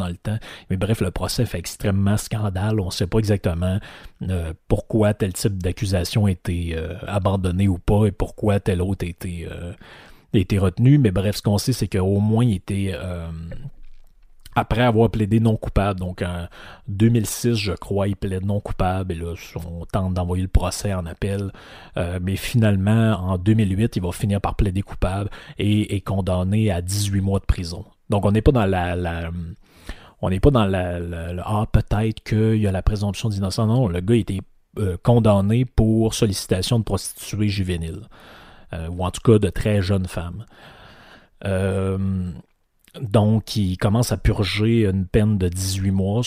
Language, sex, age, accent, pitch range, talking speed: French, male, 30-49, Canadian, 90-110 Hz, 185 wpm